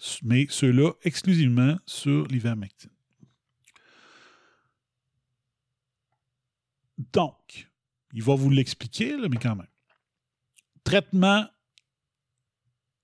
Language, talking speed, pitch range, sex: French, 70 wpm, 125-175 Hz, male